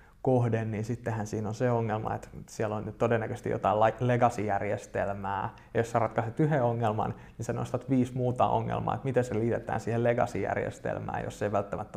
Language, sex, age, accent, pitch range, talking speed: Finnish, male, 20-39, native, 105-130 Hz, 175 wpm